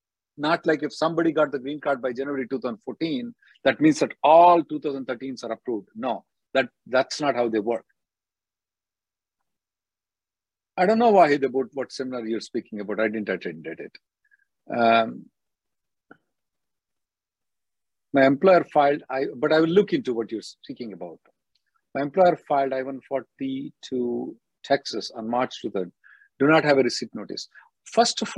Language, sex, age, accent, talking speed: English, male, 50-69, Indian, 150 wpm